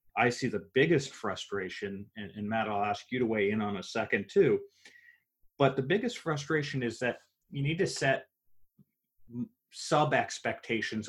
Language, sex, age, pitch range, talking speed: English, male, 30-49, 105-135 Hz, 155 wpm